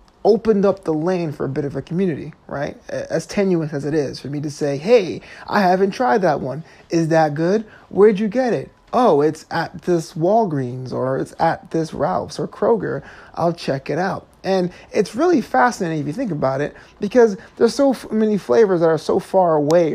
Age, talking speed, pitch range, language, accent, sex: 30-49, 205 wpm, 135-185 Hz, English, American, male